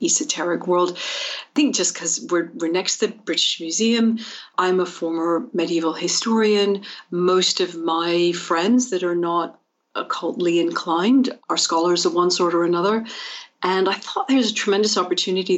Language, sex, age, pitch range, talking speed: English, female, 40-59, 170-230 Hz, 160 wpm